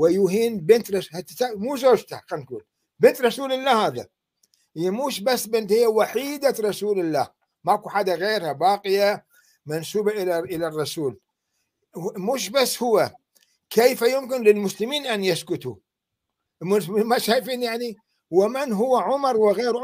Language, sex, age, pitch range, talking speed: Arabic, male, 60-79, 180-245 Hz, 120 wpm